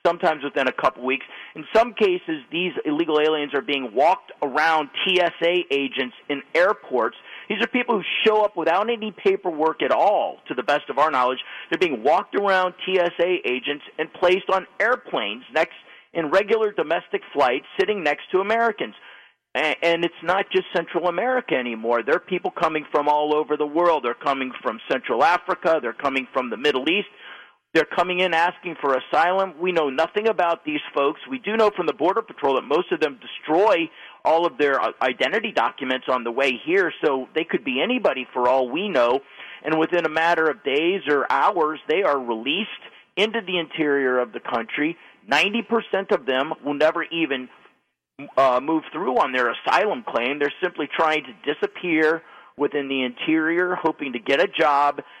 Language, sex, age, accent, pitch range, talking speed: English, male, 40-59, American, 145-190 Hz, 185 wpm